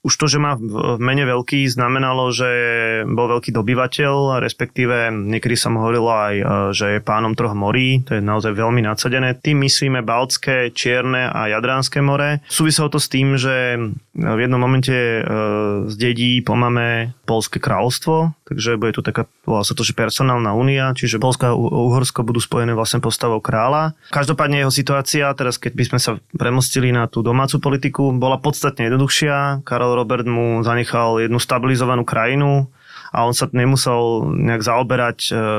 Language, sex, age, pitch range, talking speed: Slovak, male, 20-39, 115-140 Hz, 160 wpm